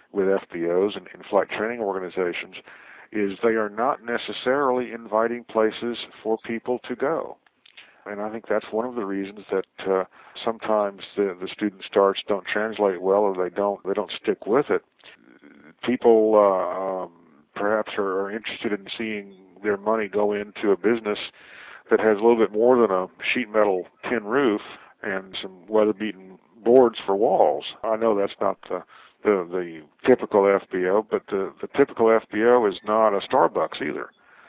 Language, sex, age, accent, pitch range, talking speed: English, male, 50-69, American, 95-110 Hz, 165 wpm